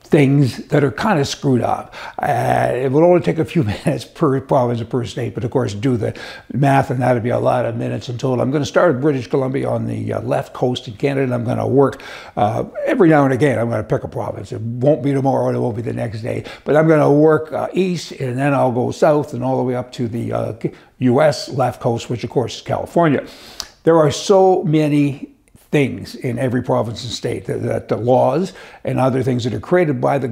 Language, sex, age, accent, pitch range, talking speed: English, male, 60-79, American, 125-150 Hz, 250 wpm